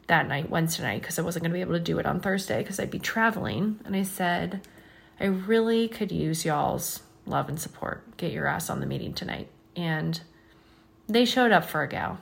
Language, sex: English, female